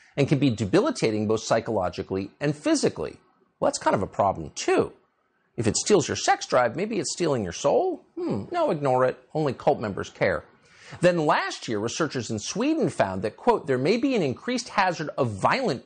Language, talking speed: English, 195 wpm